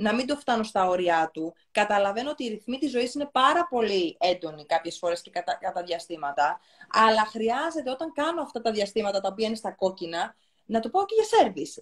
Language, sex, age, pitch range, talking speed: Greek, female, 20-39, 205-290 Hz, 210 wpm